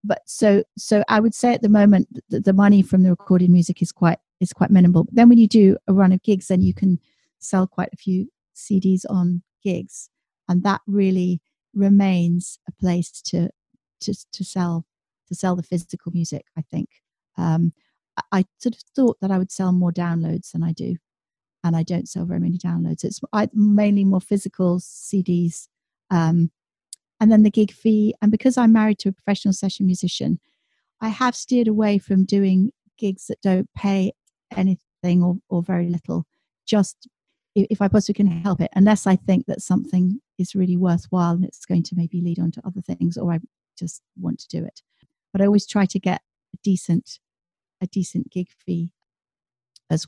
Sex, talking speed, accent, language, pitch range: female, 190 wpm, British, English, 175-205 Hz